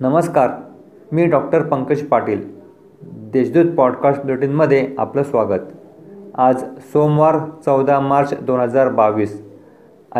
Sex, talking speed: male, 90 wpm